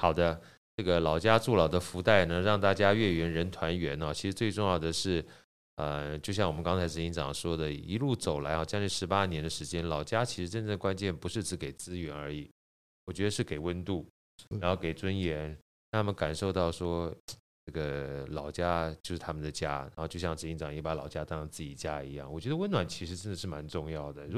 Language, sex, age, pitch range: Chinese, male, 20-39, 80-100 Hz